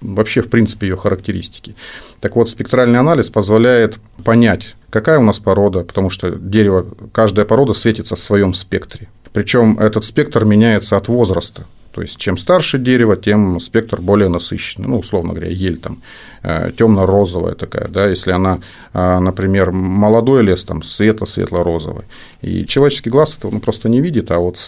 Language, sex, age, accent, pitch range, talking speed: Russian, male, 40-59, native, 95-120 Hz, 170 wpm